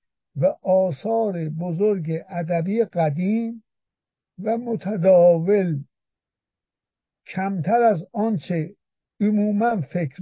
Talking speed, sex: 70 wpm, male